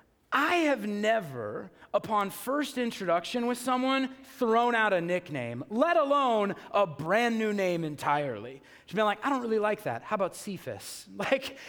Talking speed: 165 wpm